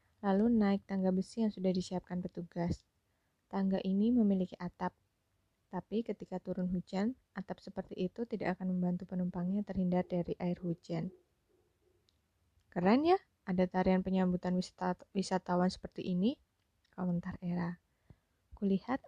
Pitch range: 175-200 Hz